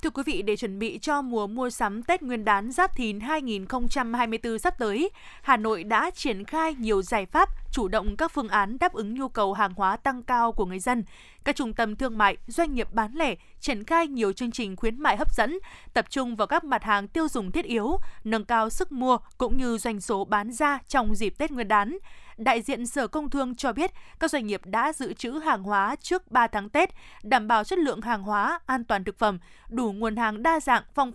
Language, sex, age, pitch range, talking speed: Vietnamese, female, 20-39, 215-285 Hz, 230 wpm